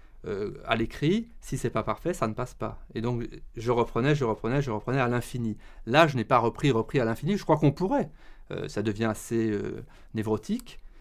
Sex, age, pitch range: male, 30-49, 110-145 Hz